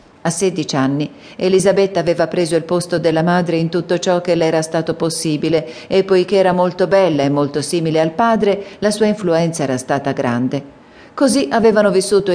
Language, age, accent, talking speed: Italian, 40-59, native, 180 wpm